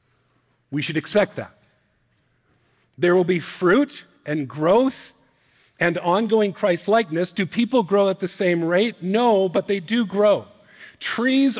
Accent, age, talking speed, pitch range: American, 50-69, 135 wpm, 155-205 Hz